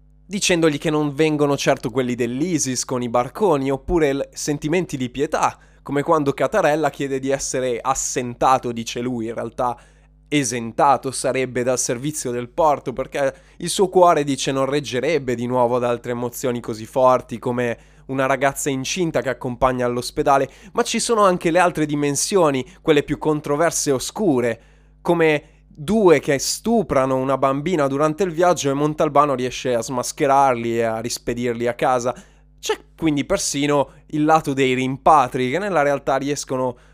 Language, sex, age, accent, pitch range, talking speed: Italian, male, 20-39, native, 125-155 Hz, 155 wpm